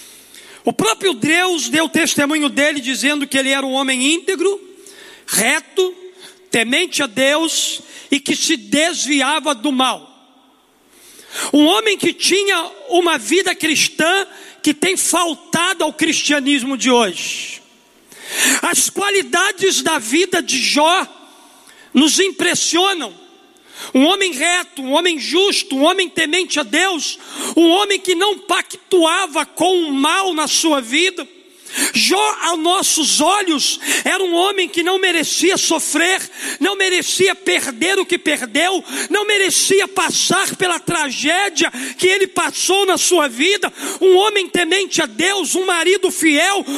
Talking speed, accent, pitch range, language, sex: 130 wpm, Brazilian, 300-370 Hz, Portuguese, male